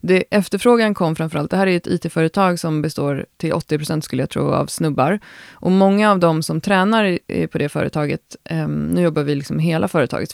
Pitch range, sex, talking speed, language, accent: 150-180 Hz, female, 215 wpm, Swedish, native